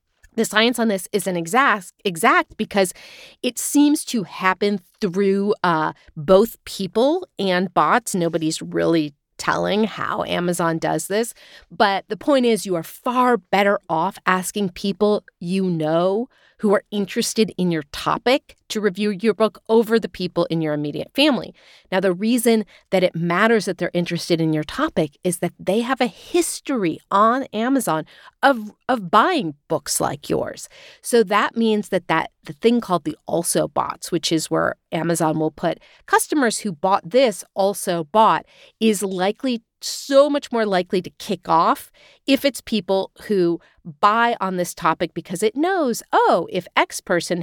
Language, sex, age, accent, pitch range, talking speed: English, female, 30-49, American, 175-230 Hz, 165 wpm